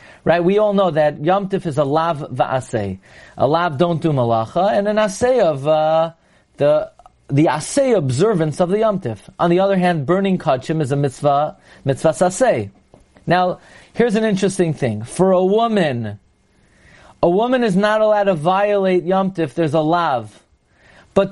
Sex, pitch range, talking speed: male, 155-225 Hz, 160 wpm